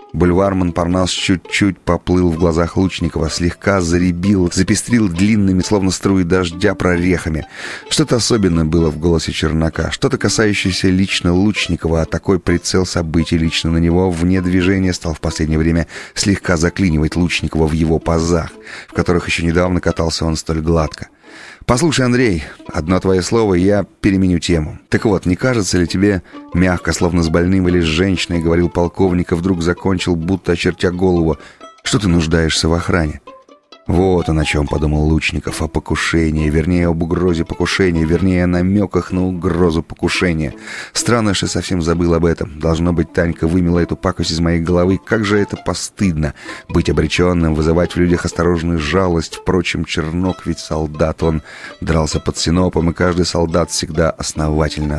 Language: Russian